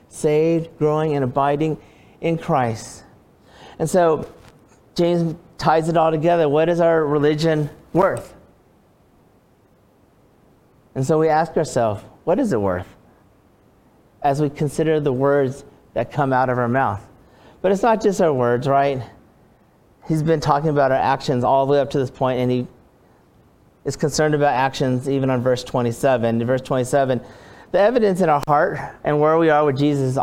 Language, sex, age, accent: English, male, 40-59, American